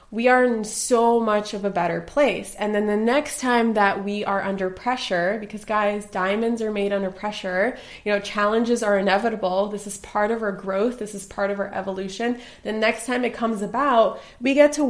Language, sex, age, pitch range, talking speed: English, female, 20-39, 200-235 Hz, 210 wpm